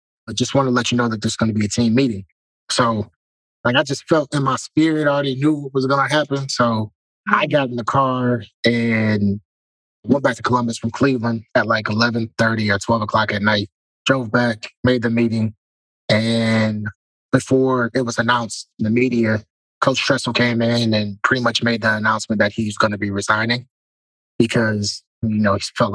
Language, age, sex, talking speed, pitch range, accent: English, 20-39, male, 200 wpm, 105-120 Hz, American